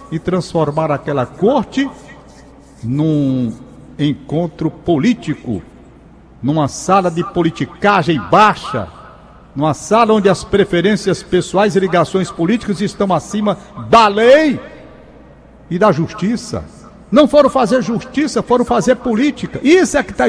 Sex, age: male, 60-79